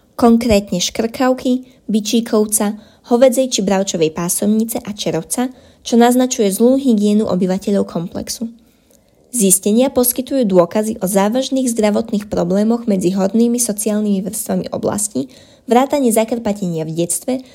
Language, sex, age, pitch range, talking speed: Slovak, female, 20-39, 195-245 Hz, 105 wpm